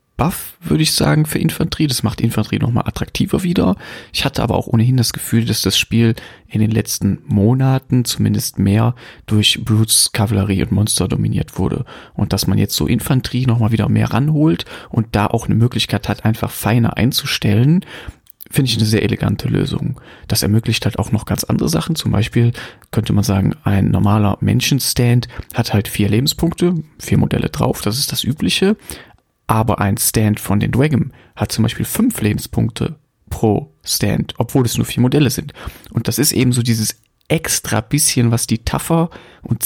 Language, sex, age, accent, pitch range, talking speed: German, male, 30-49, German, 110-130 Hz, 180 wpm